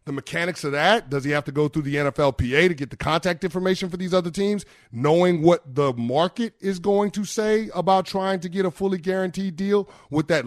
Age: 30-49